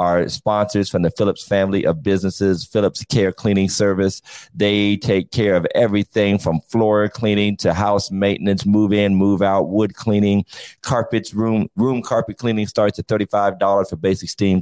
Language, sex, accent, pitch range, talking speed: English, male, American, 90-105 Hz, 165 wpm